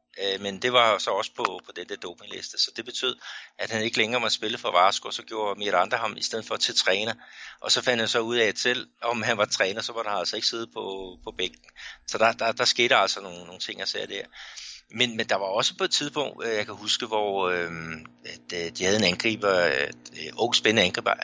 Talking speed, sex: 235 wpm, male